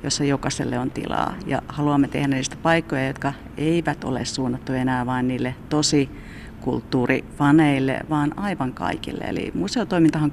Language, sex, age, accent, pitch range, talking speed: Finnish, female, 40-59, native, 140-185 Hz, 135 wpm